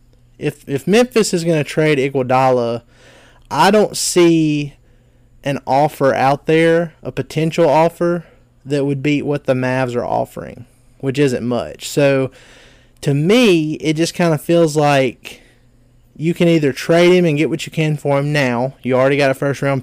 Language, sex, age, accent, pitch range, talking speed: English, male, 30-49, American, 125-155 Hz, 170 wpm